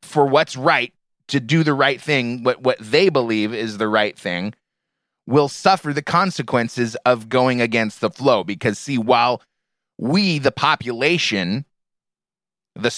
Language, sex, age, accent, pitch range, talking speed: English, male, 30-49, American, 125-170 Hz, 150 wpm